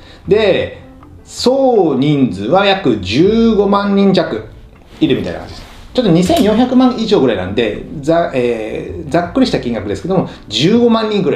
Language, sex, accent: Japanese, male, native